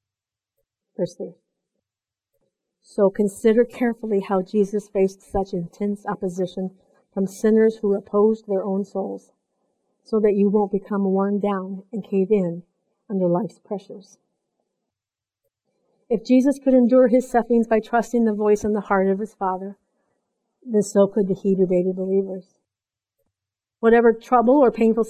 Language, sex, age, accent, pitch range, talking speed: English, female, 50-69, American, 195-230 Hz, 135 wpm